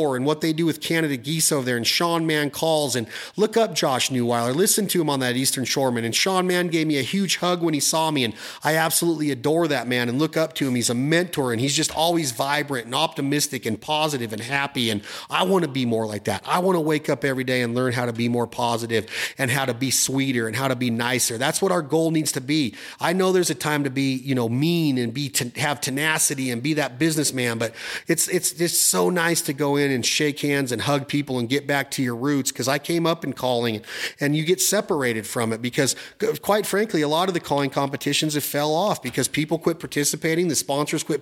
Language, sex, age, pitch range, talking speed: English, male, 30-49, 125-160 Hz, 250 wpm